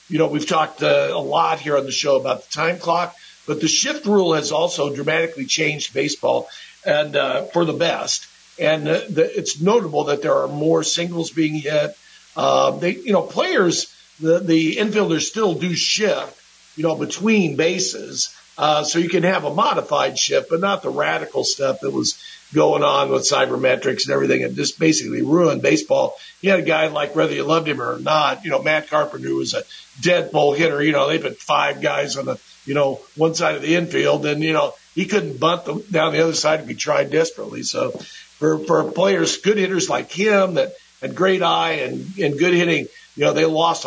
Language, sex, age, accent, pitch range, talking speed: English, male, 50-69, American, 150-185 Hz, 210 wpm